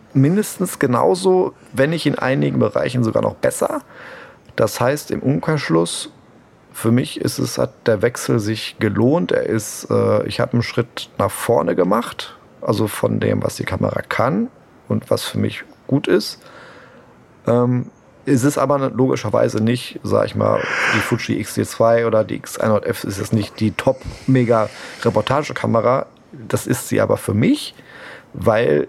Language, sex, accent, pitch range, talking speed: German, male, German, 110-135 Hz, 160 wpm